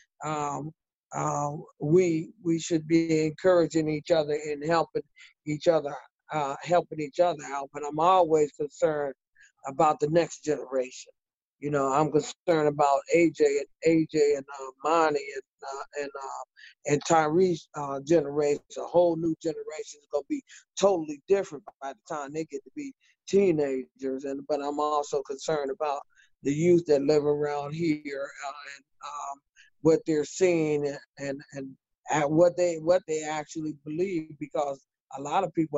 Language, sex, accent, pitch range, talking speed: English, male, American, 145-170 Hz, 160 wpm